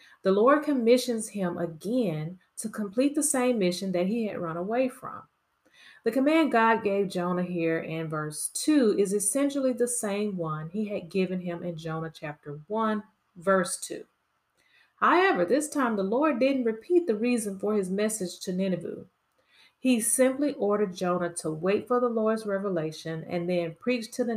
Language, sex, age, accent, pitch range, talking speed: English, female, 30-49, American, 175-240 Hz, 170 wpm